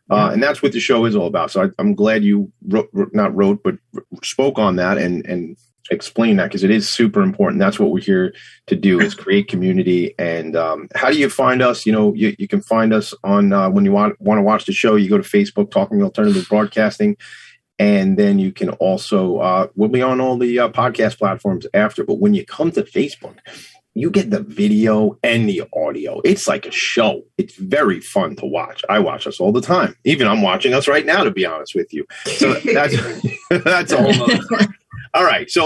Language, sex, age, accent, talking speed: English, male, 30-49, American, 225 wpm